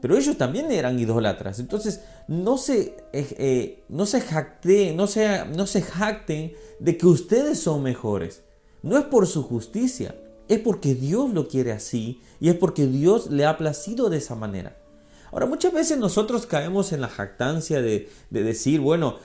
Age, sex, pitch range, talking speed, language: 40-59, male, 120-185 Hz, 175 wpm, Spanish